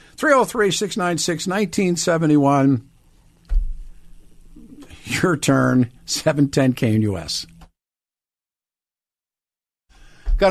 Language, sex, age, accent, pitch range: English, male, 50-69, American, 130-165 Hz